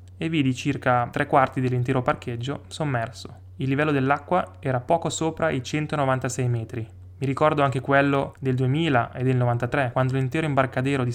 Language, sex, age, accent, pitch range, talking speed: Italian, male, 20-39, native, 120-145 Hz, 160 wpm